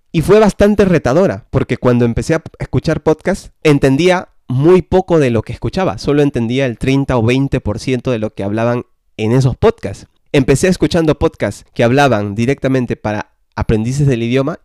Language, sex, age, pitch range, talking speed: Spanish, male, 20-39, 120-165 Hz, 165 wpm